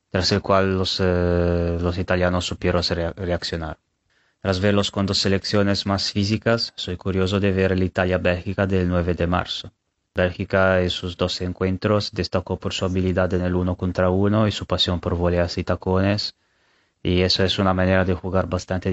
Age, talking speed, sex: 20-39, 180 wpm, male